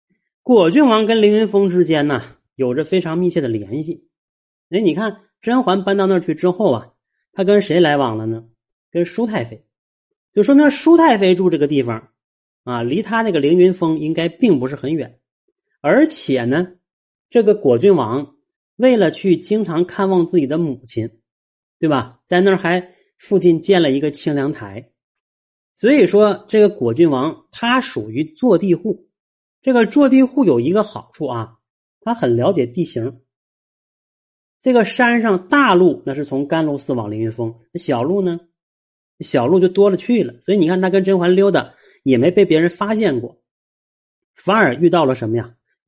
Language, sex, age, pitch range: Chinese, male, 30-49, 140-210 Hz